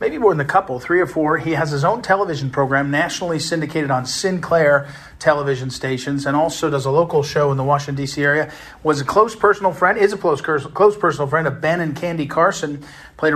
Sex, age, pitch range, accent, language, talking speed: male, 40-59, 145-180 Hz, American, English, 215 wpm